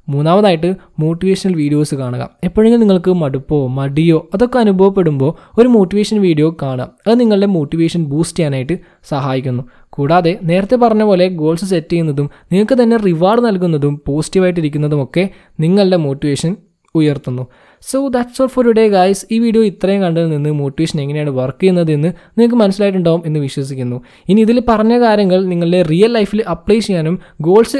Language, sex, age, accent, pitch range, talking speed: Malayalam, male, 20-39, native, 150-210 Hz, 140 wpm